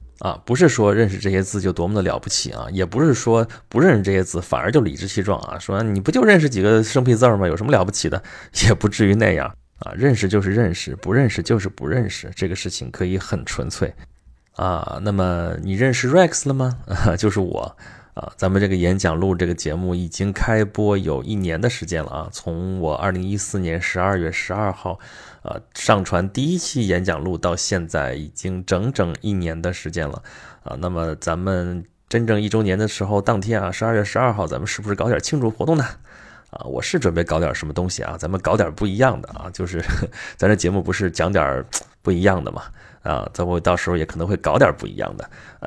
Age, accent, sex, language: 20-39, native, male, Chinese